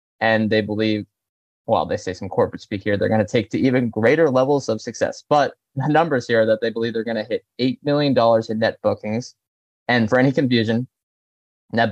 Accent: American